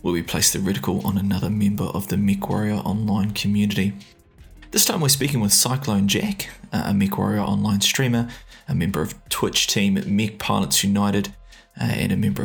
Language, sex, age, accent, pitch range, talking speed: English, male, 20-39, Australian, 100-125 Hz, 165 wpm